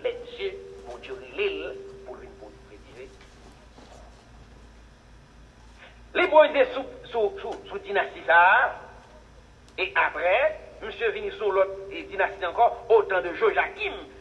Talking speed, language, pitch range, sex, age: 125 wpm, English, 245-400 Hz, male, 60-79